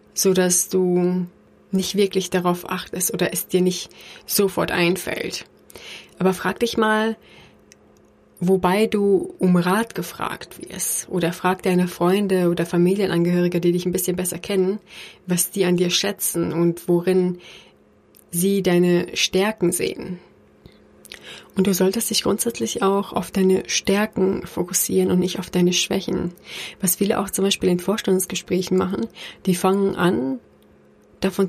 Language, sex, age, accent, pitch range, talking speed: German, female, 30-49, German, 175-195 Hz, 135 wpm